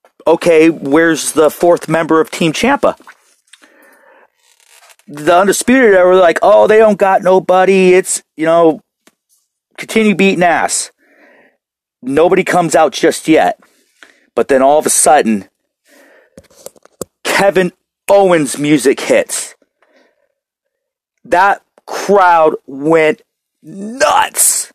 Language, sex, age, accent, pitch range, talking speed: English, male, 40-59, American, 160-215 Hz, 100 wpm